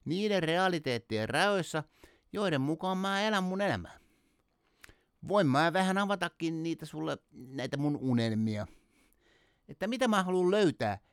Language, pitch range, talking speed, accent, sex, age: Finnish, 130-205 Hz, 125 wpm, native, male, 60-79